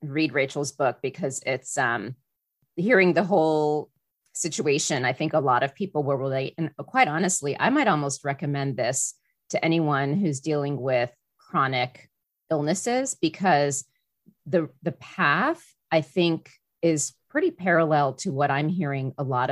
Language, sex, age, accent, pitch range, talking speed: English, female, 40-59, American, 135-165 Hz, 150 wpm